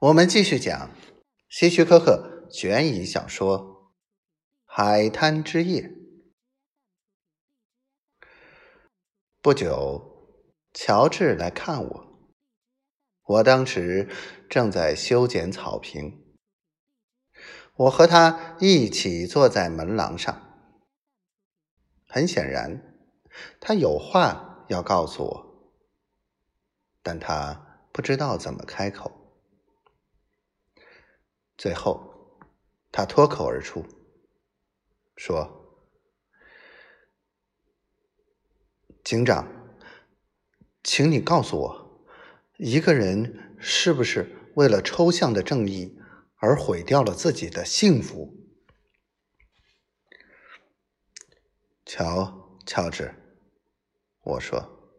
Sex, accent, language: male, native, Chinese